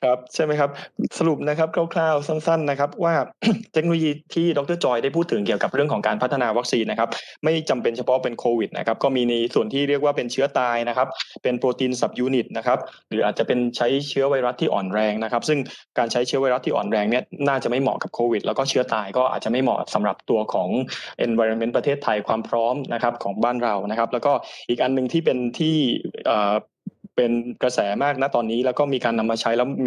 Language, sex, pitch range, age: Thai, male, 120-160 Hz, 20-39